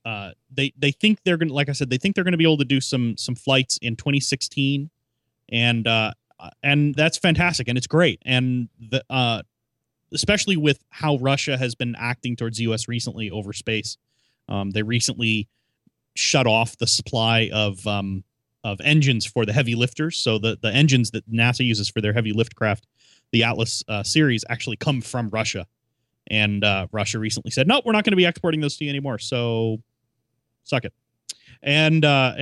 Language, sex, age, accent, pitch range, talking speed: English, male, 30-49, American, 115-145 Hz, 190 wpm